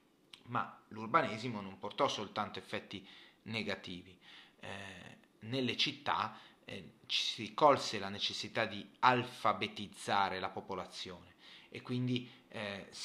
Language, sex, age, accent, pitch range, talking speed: Italian, male, 30-49, native, 95-125 Hz, 105 wpm